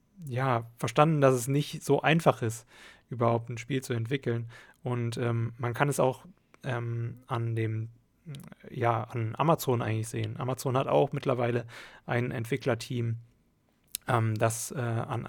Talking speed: 145 wpm